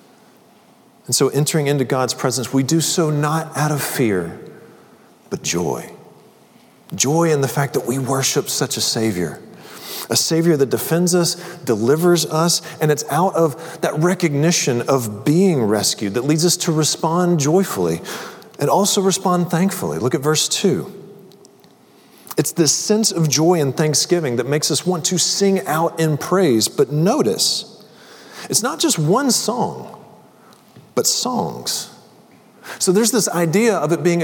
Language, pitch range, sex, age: English, 140-185 Hz, male, 40-59